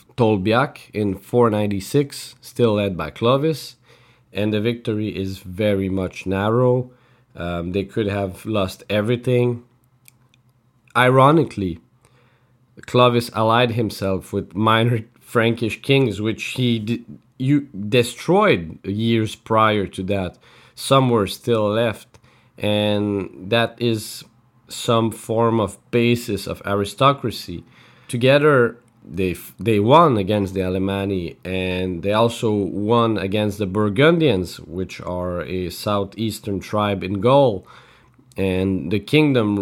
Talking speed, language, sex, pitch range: 110 wpm, English, male, 100-125 Hz